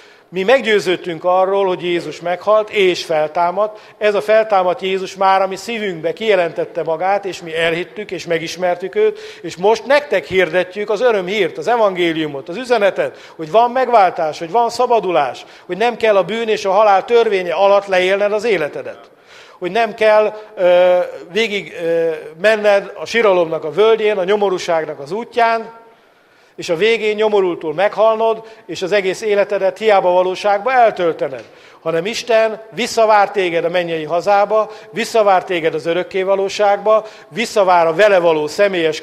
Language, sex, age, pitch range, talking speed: English, male, 50-69, 180-225 Hz, 150 wpm